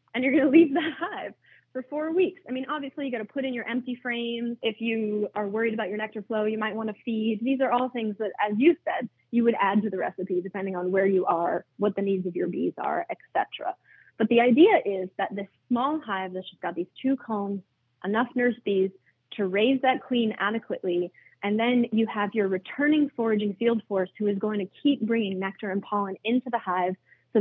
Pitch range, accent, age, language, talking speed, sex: 200-260 Hz, American, 20-39, English, 230 wpm, female